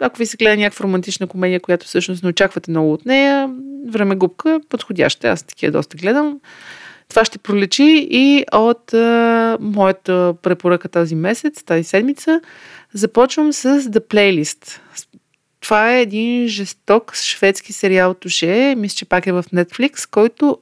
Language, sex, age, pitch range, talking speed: Bulgarian, female, 30-49, 185-230 Hz, 150 wpm